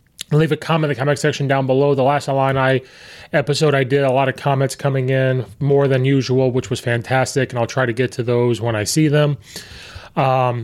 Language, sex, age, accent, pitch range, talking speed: English, male, 30-49, American, 125-145 Hz, 220 wpm